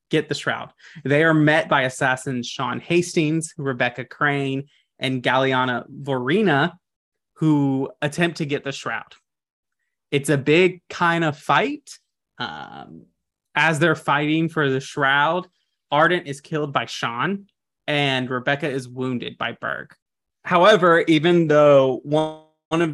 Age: 20-39